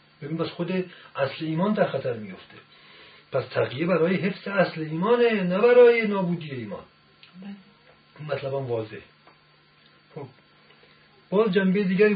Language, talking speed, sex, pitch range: Persian, 120 wpm, male, 135-170 Hz